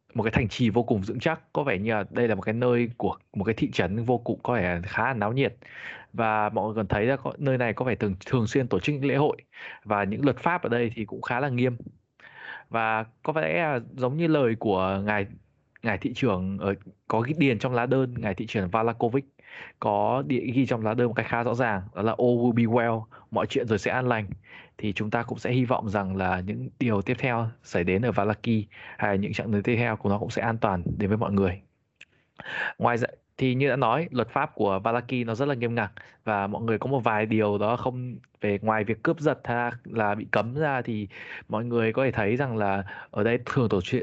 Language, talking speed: Vietnamese, 250 wpm